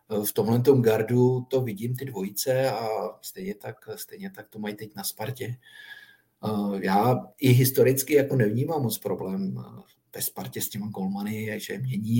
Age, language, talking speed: 50-69, Czech, 155 wpm